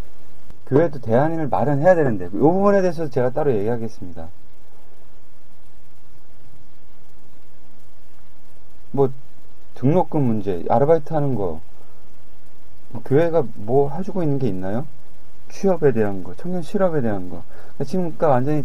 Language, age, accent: Korean, 40-59, native